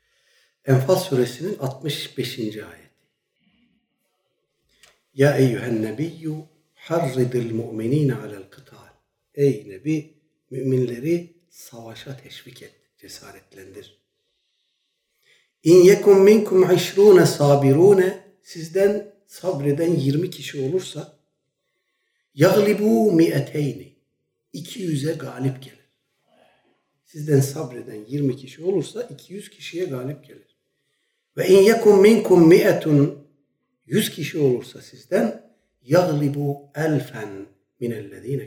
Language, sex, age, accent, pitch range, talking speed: Turkish, male, 60-79, native, 130-185 Hz, 85 wpm